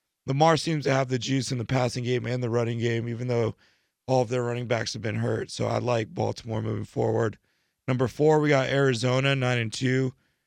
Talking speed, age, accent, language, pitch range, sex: 225 wpm, 30-49, American, English, 115-130 Hz, male